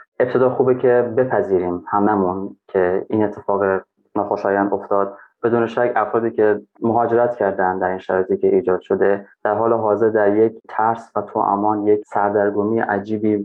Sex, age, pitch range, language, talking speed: male, 20-39, 100-115 Hz, Persian, 145 wpm